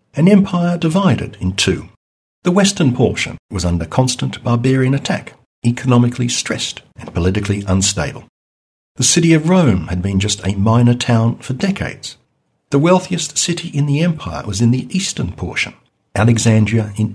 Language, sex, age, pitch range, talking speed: English, male, 60-79, 105-155 Hz, 150 wpm